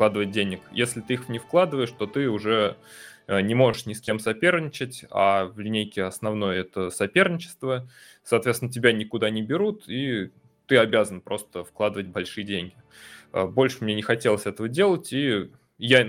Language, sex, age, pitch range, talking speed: Russian, male, 20-39, 105-125 Hz, 155 wpm